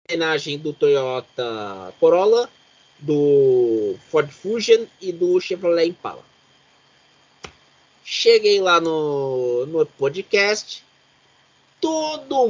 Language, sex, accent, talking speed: Portuguese, male, Brazilian, 85 wpm